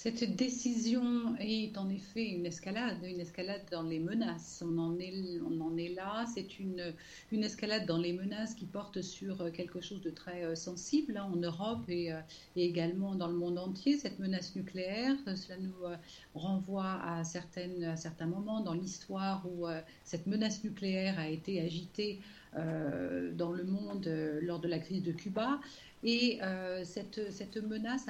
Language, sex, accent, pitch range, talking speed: French, female, French, 175-215 Hz, 165 wpm